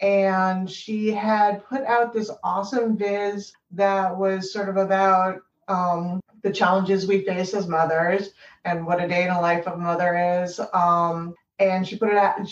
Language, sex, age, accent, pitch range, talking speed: English, female, 30-49, American, 175-205 Hz, 180 wpm